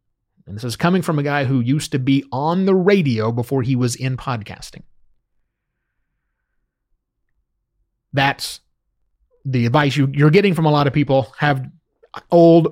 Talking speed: 145 wpm